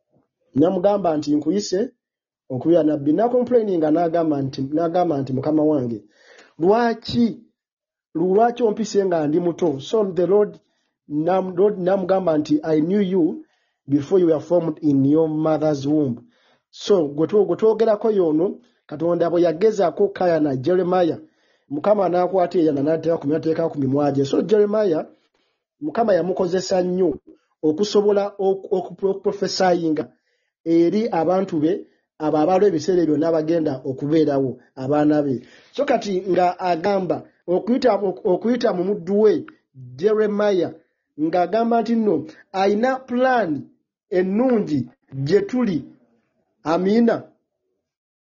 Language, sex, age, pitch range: Japanese, male, 50-69, 155-215 Hz